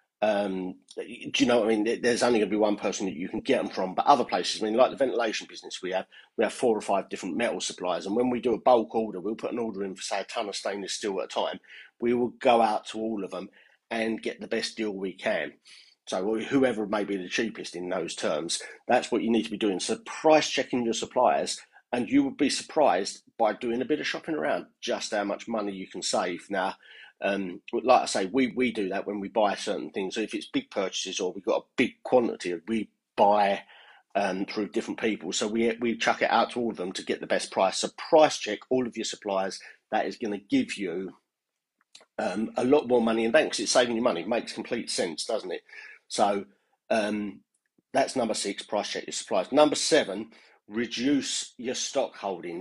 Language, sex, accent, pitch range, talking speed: English, male, British, 100-125 Hz, 235 wpm